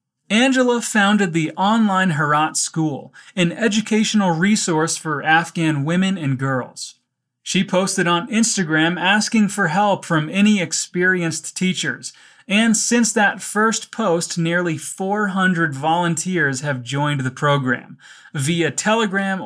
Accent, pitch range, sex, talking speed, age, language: American, 150-195 Hz, male, 120 wpm, 30-49, Portuguese